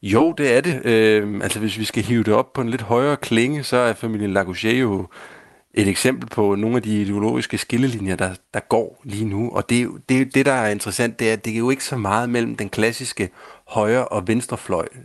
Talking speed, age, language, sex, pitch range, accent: 220 wpm, 30-49, Danish, male, 100-125 Hz, native